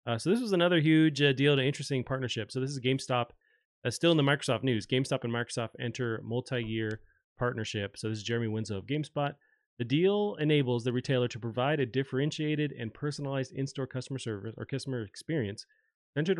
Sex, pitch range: male, 110-140 Hz